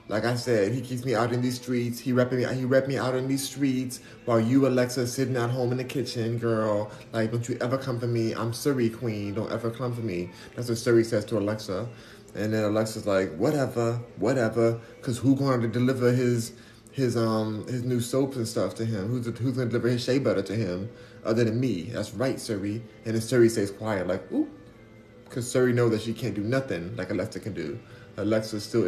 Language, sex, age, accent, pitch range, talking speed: English, male, 30-49, American, 105-120 Hz, 220 wpm